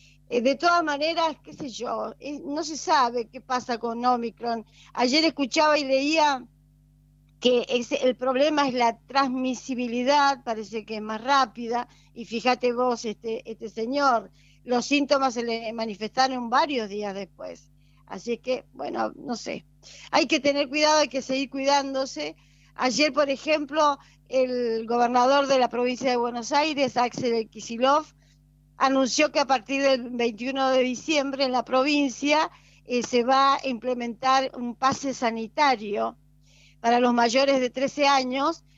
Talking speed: 145 wpm